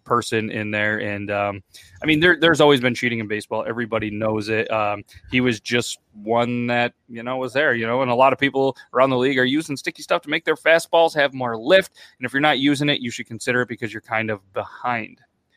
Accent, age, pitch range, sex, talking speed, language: American, 30-49, 110-130 Hz, male, 240 wpm, English